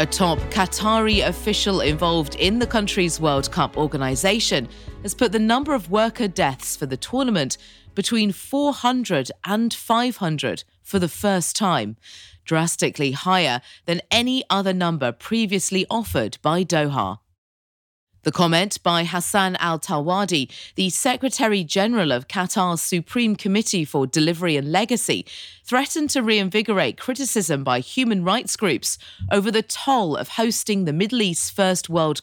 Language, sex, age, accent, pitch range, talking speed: English, female, 30-49, British, 150-215 Hz, 140 wpm